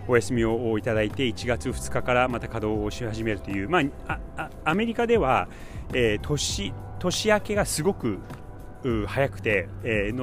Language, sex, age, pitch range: Japanese, male, 30-49, 95-130 Hz